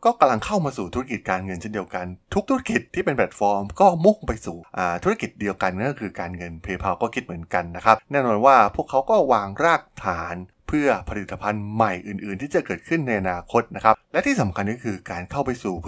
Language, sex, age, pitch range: Thai, male, 20-39, 95-120 Hz